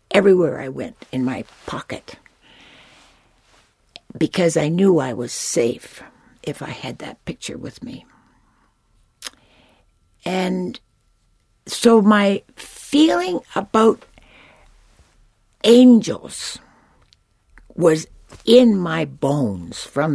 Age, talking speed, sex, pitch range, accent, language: 60-79, 90 wpm, female, 165-240 Hz, American, English